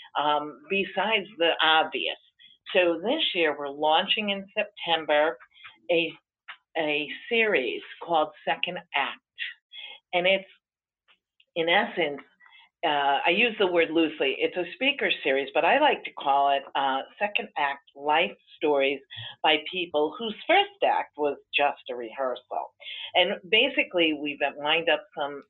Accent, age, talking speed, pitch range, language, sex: American, 50-69, 135 wpm, 145-200 Hz, English, female